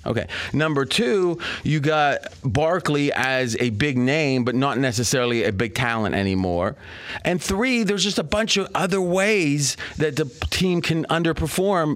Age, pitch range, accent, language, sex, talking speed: 30-49, 125-170 Hz, American, English, male, 155 wpm